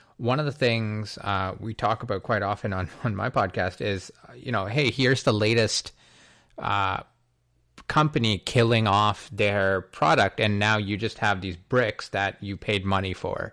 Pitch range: 100-125 Hz